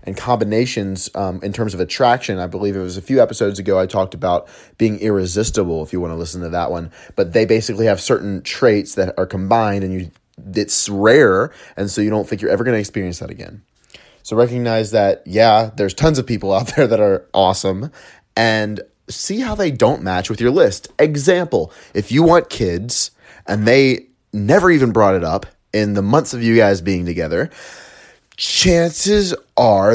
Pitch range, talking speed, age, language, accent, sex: 95-120 Hz, 195 wpm, 30-49, English, American, male